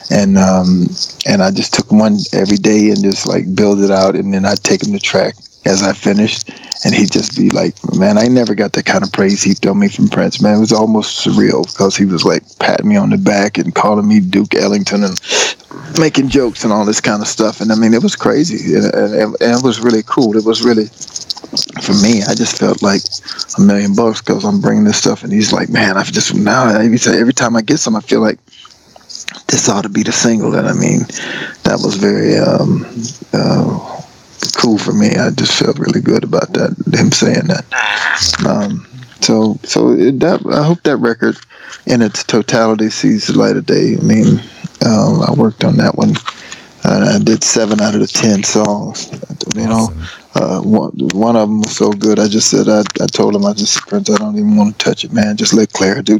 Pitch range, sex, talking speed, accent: 105-165 Hz, male, 225 wpm, American